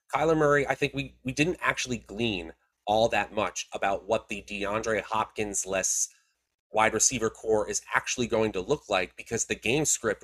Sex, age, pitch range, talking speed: male, 30-49, 105-130 Hz, 175 wpm